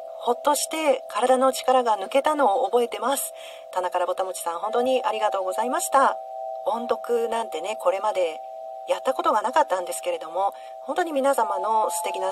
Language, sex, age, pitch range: Japanese, female, 40-59, 175-255 Hz